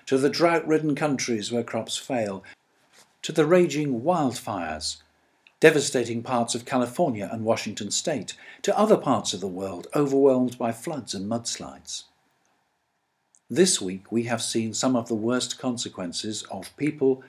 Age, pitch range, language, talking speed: 50-69, 100-125 Hz, English, 145 wpm